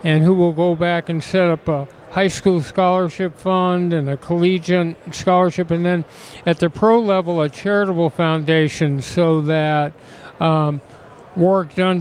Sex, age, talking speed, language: male, 60-79, 155 wpm, English